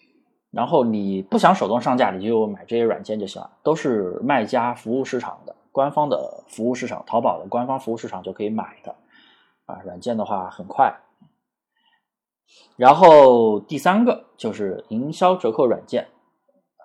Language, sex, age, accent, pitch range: Chinese, male, 20-39, native, 115-185 Hz